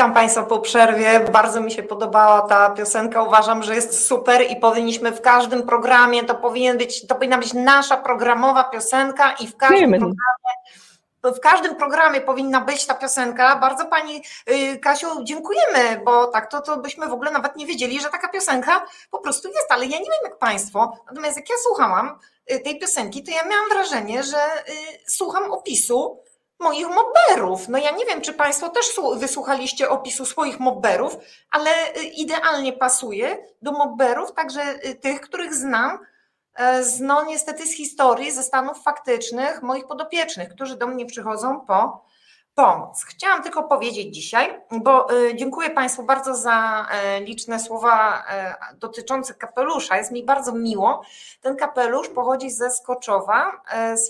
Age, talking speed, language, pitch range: 30-49, 150 wpm, Polish, 235-295 Hz